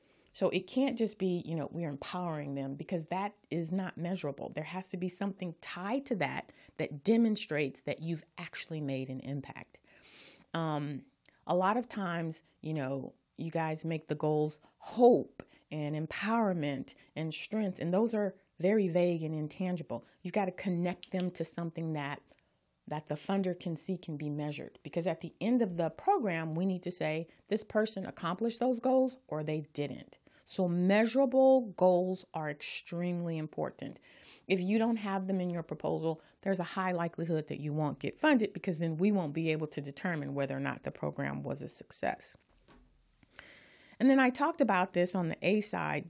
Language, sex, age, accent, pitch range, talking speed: English, female, 40-59, American, 155-200 Hz, 180 wpm